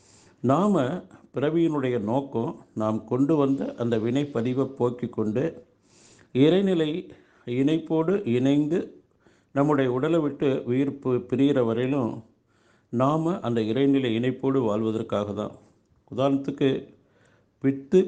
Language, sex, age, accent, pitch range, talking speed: Tamil, male, 50-69, native, 110-140 Hz, 90 wpm